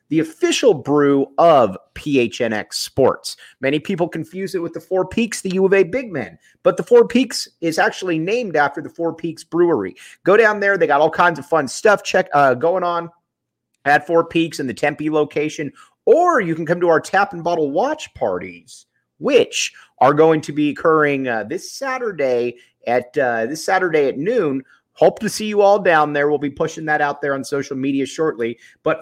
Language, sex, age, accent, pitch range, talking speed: English, male, 30-49, American, 140-185 Hz, 200 wpm